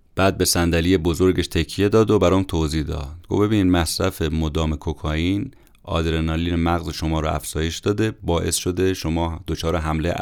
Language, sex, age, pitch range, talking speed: Persian, male, 30-49, 80-95 Hz, 155 wpm